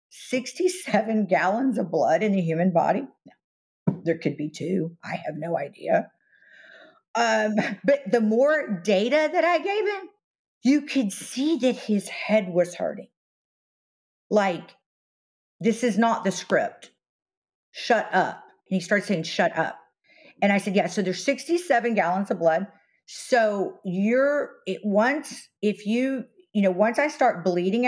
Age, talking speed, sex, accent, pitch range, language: 50-69, 145 wpm, female, American, 175-245 Hz, English